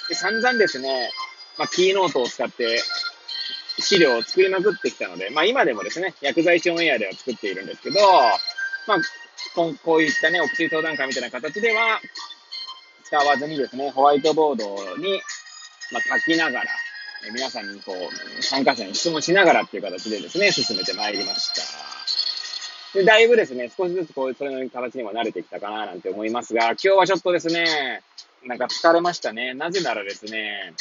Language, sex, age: Japanese, male, 20-39